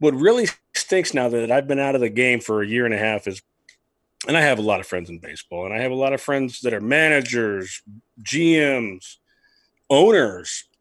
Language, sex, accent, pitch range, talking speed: English, male, American, 115-160 Hz, 215 wpm